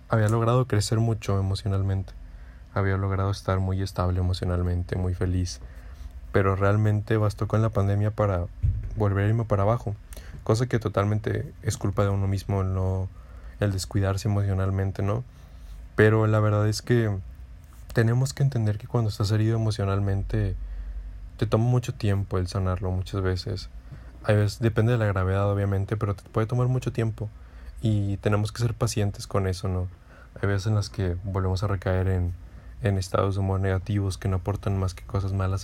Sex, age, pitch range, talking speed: male, 20-39, 95-110 Hz, 170 wpm